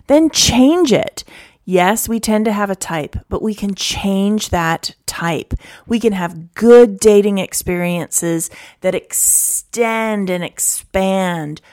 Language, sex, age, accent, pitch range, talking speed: English, female, 30-49, American, 175-235 Hz, 135 wpm